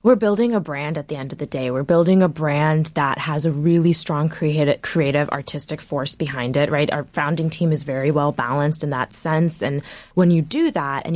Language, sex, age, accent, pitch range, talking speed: English, female, 20-39, American, 145-170 Hz, 225 wpm